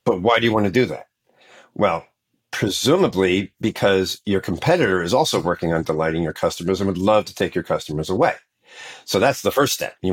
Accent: American